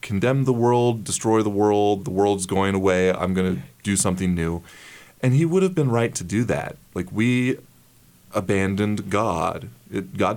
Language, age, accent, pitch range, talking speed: English, 30-49, American, 90-120 Hz, 175 wpm